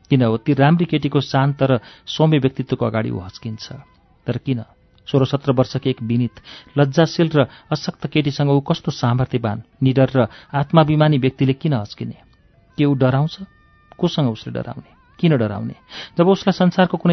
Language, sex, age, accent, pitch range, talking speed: English, male, 40-59, Indian, 120-150 Hz, 55 wpm